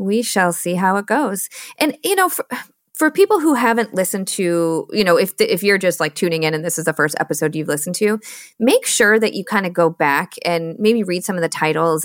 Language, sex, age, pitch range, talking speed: English, female, 30-49, 165-225 Hz, 245 wpm